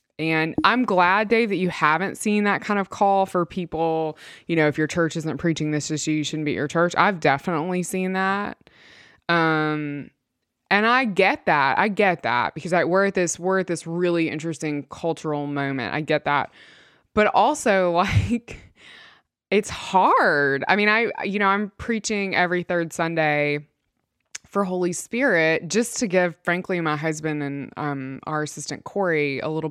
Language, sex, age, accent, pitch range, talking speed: English, female, 20-39, American, 155-190 Hz, 180 wpm